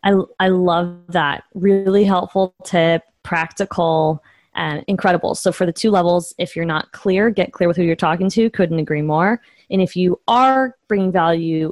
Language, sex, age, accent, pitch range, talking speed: English, female, 20-39, American, 165-200 Hz, 185 wpm